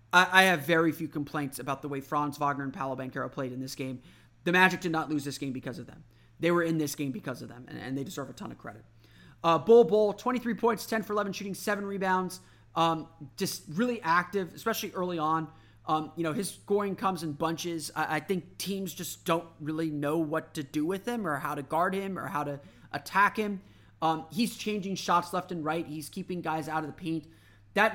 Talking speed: 225 wpm